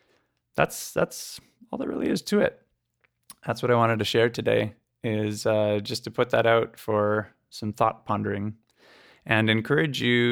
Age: 20-39